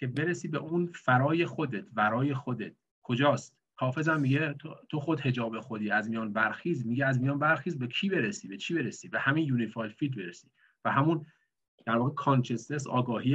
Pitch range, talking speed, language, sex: 120-145 Hz, 170 wpm, Persian, male